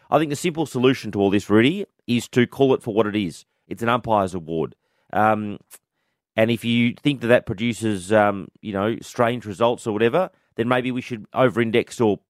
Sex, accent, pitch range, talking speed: male, Australian, 105-120 Hz, 205 wpm